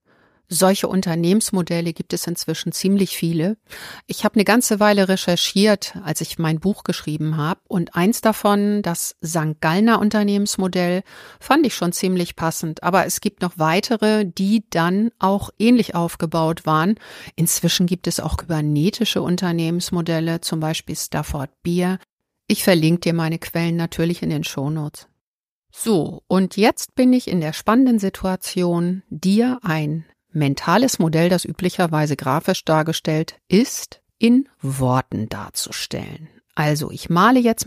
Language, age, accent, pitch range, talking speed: German, 50-69, German, 160-210 Hz, 135 wpm